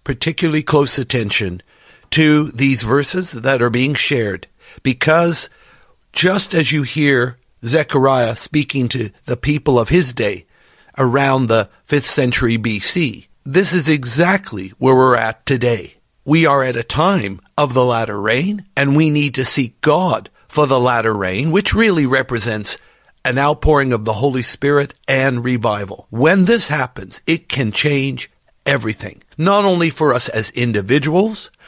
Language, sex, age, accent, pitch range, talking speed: English, male, 50-69, American, 120-160 Hz, 150 wpm